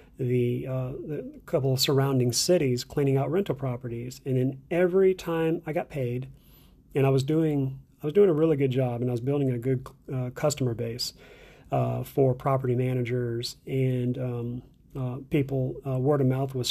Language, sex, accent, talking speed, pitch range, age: English, male, American, 185 wpm, 125-140 Hz, 40-59